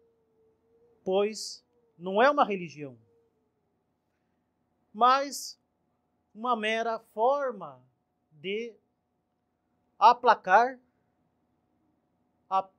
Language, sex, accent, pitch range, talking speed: Portuguese, male, Brazilian, 190-260 Hz, 55 wpm